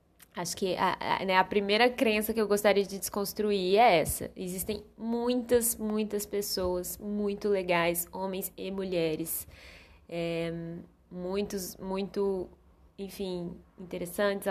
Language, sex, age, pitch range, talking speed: Portuguese, female, 10-29, 165-205 Hz, 110 wpm